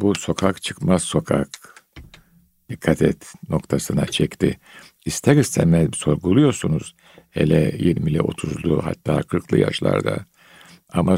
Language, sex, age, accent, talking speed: Turkish, male, 60-79, native, 95 wpm